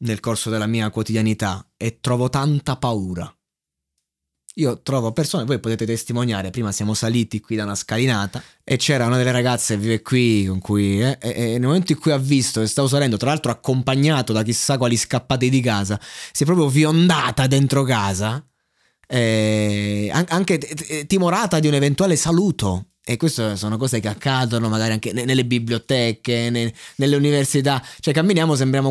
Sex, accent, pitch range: male, native, 115-150 Hz